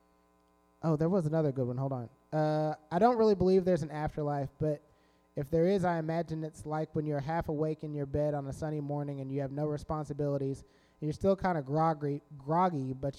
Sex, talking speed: male, 220 wpm